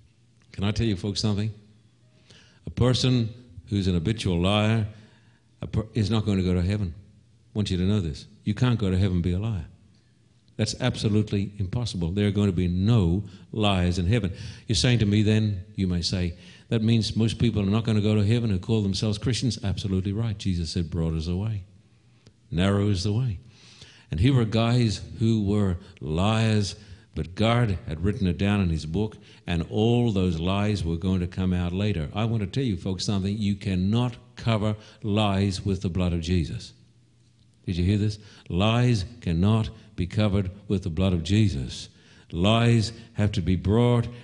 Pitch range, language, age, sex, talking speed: 95-115 Hz, English, 60-79, male, 190 wpm